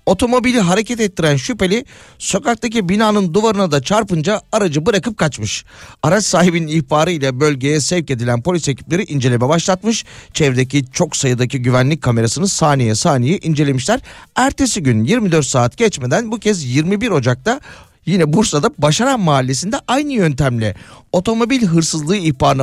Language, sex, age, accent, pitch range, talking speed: Turkish, male, 40-59, native, 140-195 Hz, 130 wpm